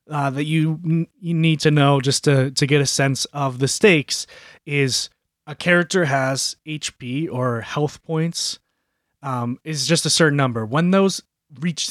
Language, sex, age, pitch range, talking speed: English, male, 30-49, 125-165 Hz, 170 wpm